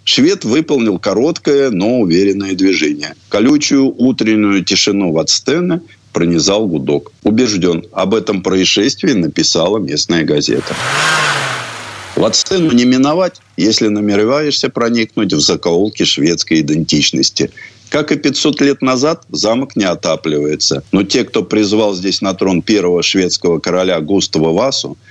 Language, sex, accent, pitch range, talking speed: Russian, male, native, 85-120 Hz, 115 wpm